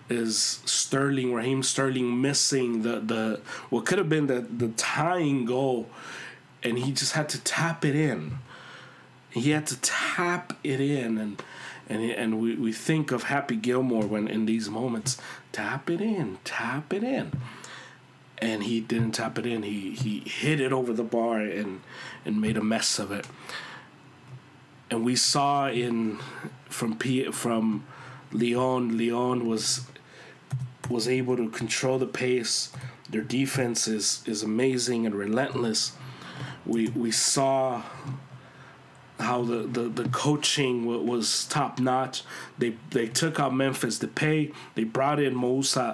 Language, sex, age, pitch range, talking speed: English, male, 30-49, 115-140 Hz, 145 wpm